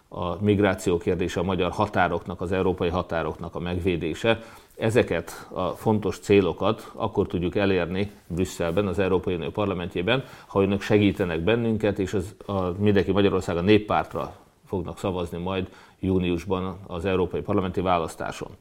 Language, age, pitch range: Hungarian, 30-49, 90-105 Hz